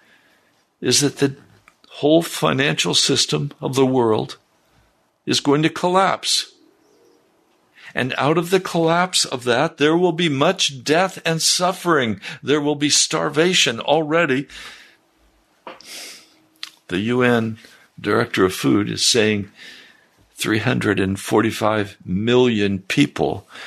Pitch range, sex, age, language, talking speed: 105-150 Hz, male, 60-79, English, 105 wpm